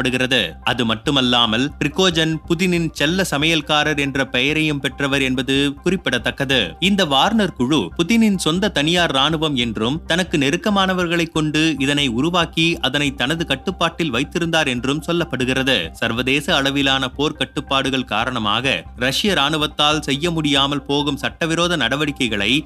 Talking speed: 110 wpm